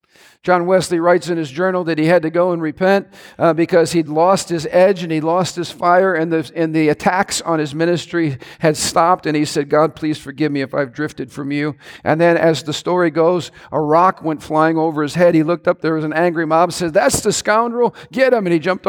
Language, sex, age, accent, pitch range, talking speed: English, male, 50-69, American, 160-195 Hz, 240 wpm